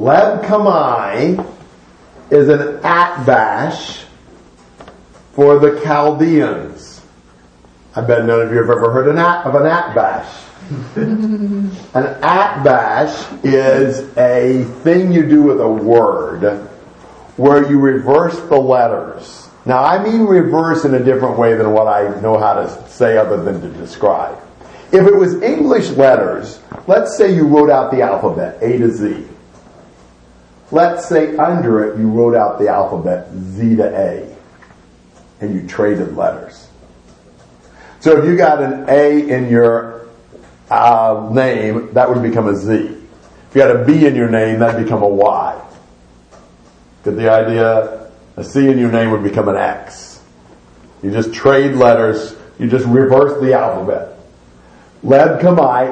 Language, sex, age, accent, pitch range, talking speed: English, male, 50-69, American, 100-145 Hz, 145 wpm